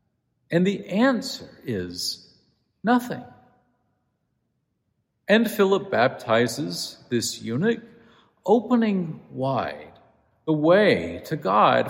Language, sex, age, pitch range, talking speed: English, male, 50-69, 145-220 Hz, 80 wpm